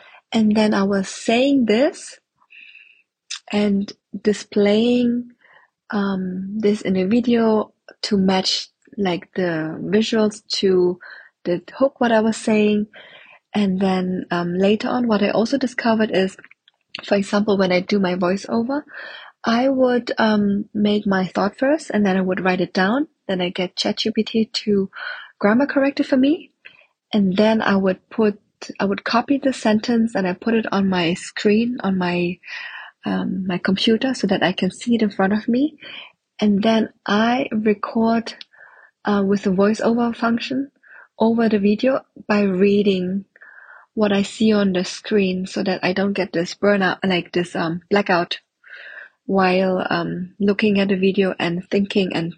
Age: 20-39